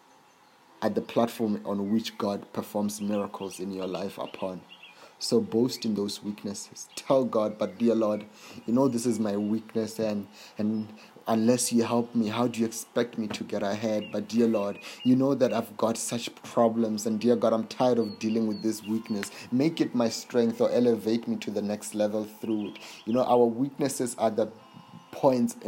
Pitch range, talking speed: 110-120 Hz, 190 wpm